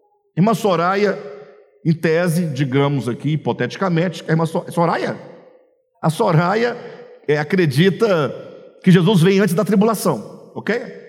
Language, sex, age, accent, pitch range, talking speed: Portuguese, male, 50-69, Brazilian, 150-225 Hz, 115 wpm